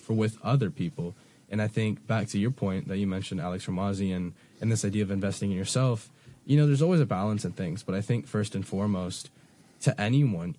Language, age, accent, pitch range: English, 10-29, American, 95-125 Hz